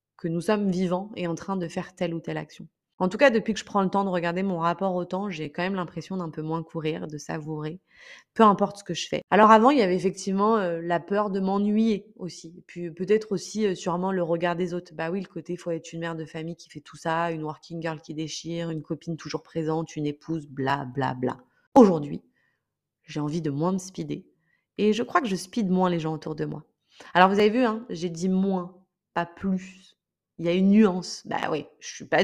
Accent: French